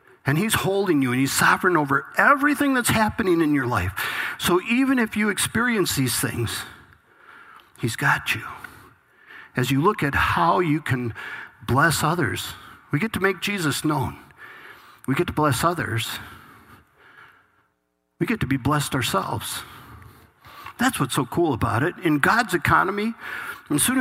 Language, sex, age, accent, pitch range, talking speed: English, male, 50-69, American, 125-185 Hz, 150 wpm